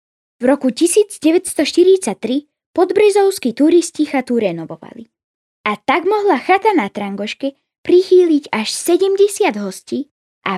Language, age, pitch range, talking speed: Slovak, 10-29, 235-345 Hz, 100 wpm